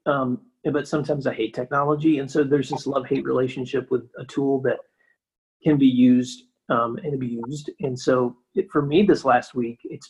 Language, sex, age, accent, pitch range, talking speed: English, male, 30-49, American, 125-150 Hz, 190 wpm